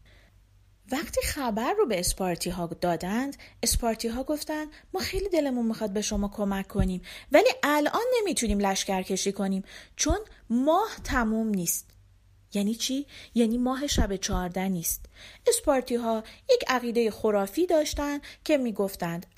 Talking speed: 130 wpm